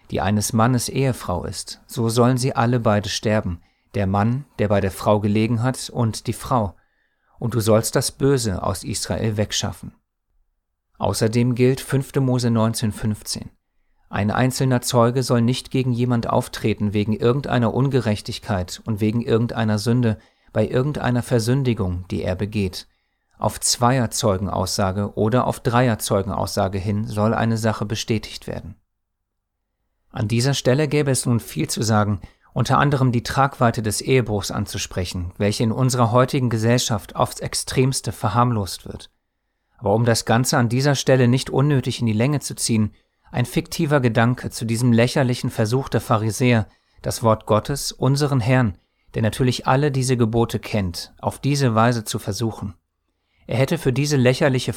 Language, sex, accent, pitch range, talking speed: German, male, German, 105-125 Hz, 150 wpm